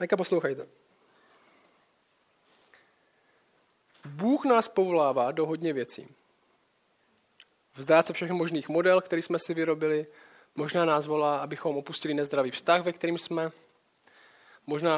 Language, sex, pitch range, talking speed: Czech, male, 155-195 Hz, 110 wpm